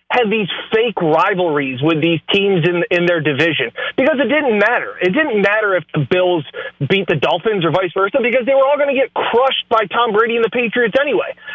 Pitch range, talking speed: 175-240 Hz, 220 wpm